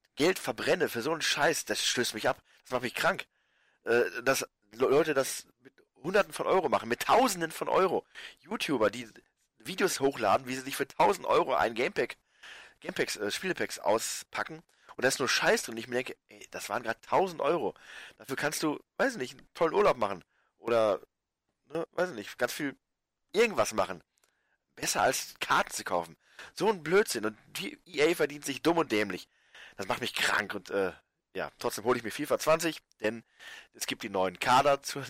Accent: German